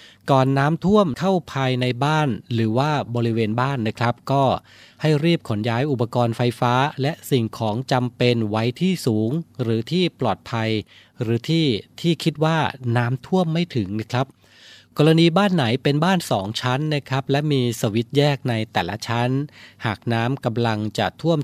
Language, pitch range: Thai, 115-145 Hz